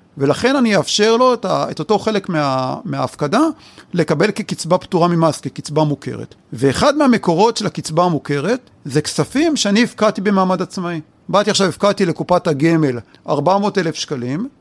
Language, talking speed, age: Hebrew, 140 wpm, 40-59